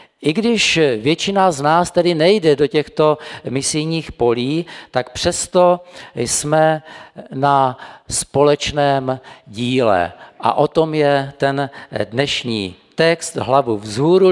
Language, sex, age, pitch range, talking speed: Czech, male, 50-69, 125-170 Hz, 110 wpm